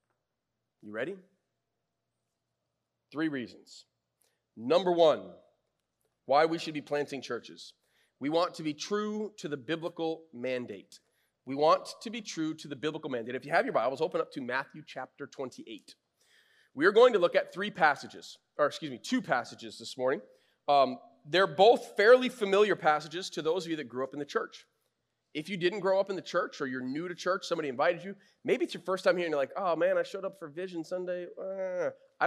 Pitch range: 150-205 Hz